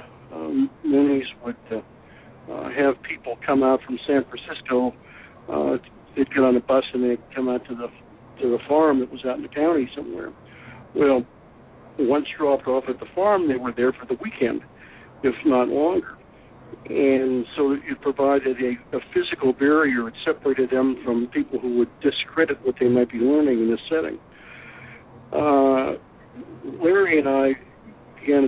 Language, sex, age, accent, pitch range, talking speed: English, male, 60-79, American, 125-140 Hz, 165 wpm